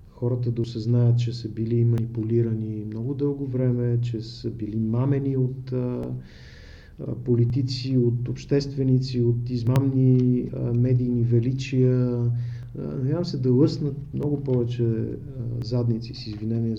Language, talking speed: Bulgarian, 120 wpm